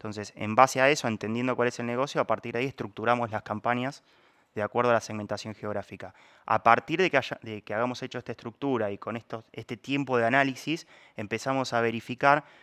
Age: 20-39